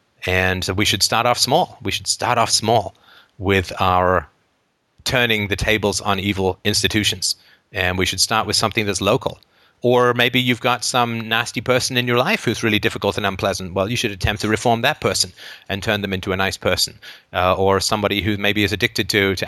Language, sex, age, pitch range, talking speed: English, male, 30-49, 100-125 Hz, 205 wpm